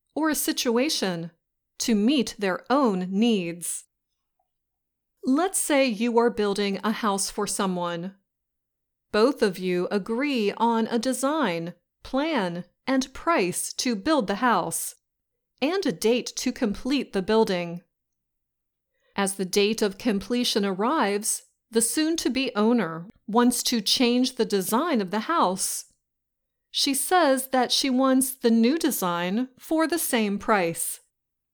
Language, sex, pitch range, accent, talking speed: English, female, 195-265 Hz, American, 125 wpm